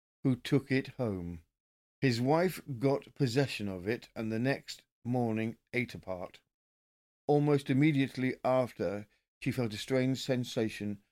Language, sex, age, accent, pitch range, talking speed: English, male, 50-69, British, 105-135 Hz, 130 wpm